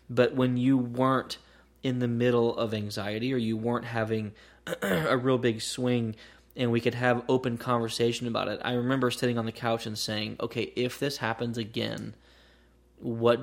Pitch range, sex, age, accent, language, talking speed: 110-125 Hz, male, 20-39, American, English, 175 wpm